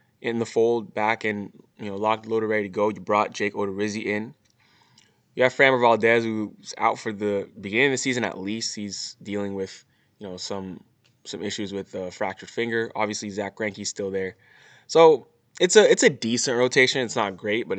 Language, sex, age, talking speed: English, male, 10-29, 200 wpm